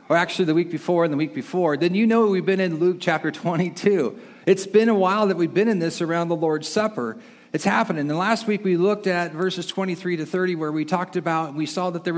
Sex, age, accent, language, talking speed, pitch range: male, 40-59, American, English, 260 wpm, 155-215 Hz